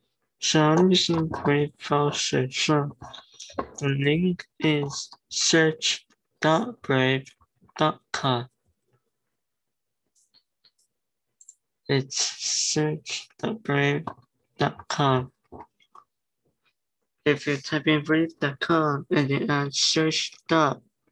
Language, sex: Chinese, male